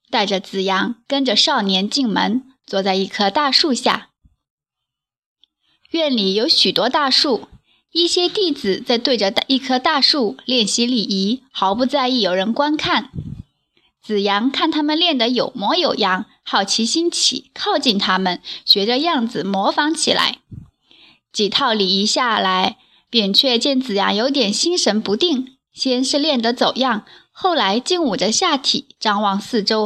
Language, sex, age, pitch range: Chinese, female, 20-39, 210-285 Hz